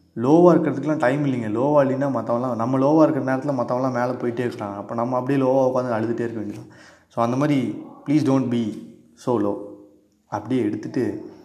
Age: 20-39